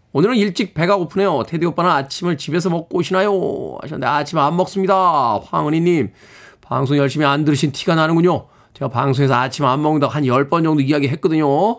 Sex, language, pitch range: male, Korean, 145-210 Hz